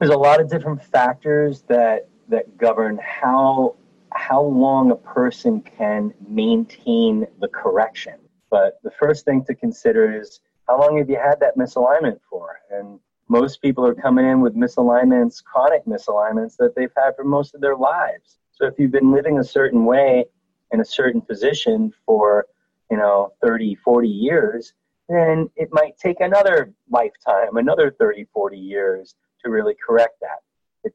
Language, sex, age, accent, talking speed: English, male, 30-49, American, 165 wpm